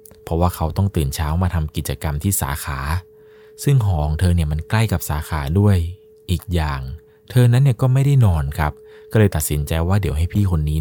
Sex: male